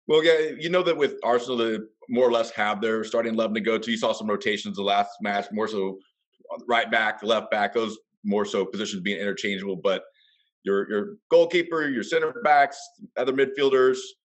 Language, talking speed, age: English, 195 wpm, 30-49